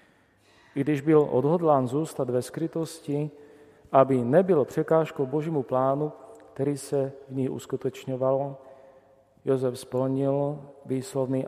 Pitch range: 120-145 Hz